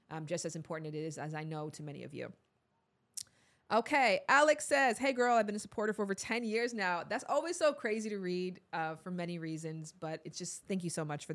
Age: 20-39